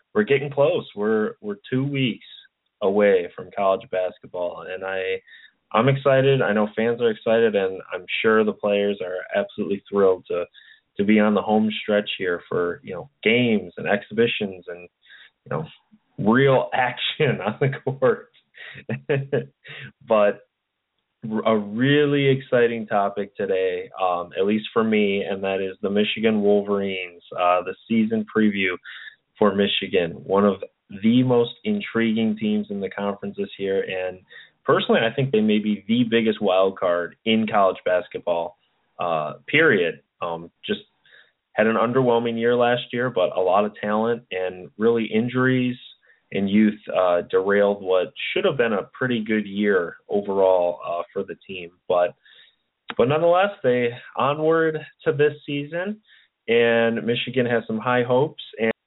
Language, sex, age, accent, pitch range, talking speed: English, male, 20-39, American, 100-130 Hz, 150 wpm